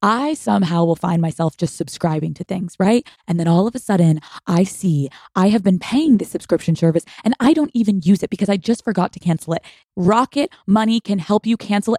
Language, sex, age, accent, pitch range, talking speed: English, female, 20-39, American, 180-225 Hz, 220 wpm